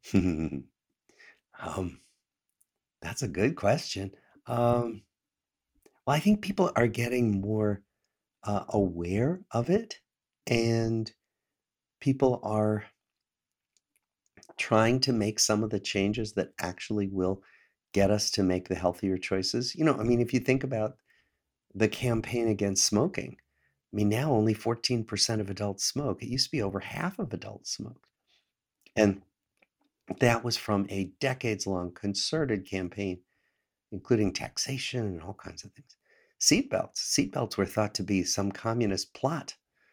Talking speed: 135 wpm